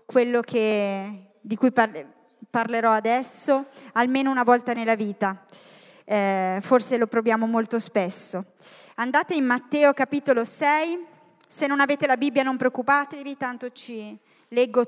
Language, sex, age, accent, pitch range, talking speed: Italian, female, 20-39, native, 230-285 Hz, 125 wpm